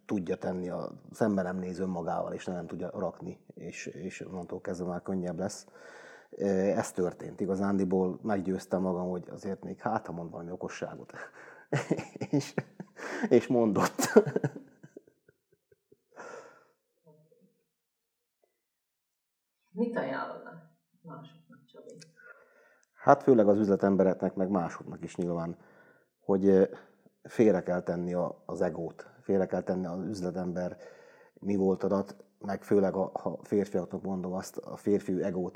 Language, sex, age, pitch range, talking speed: Hungarian, male, 30-49, 90-110 Hz, 115 wpm